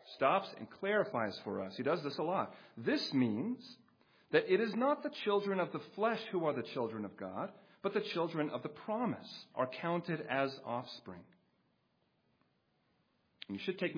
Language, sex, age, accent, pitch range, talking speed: English, male, 40-59, American, 135-205 Hz, 170 wpm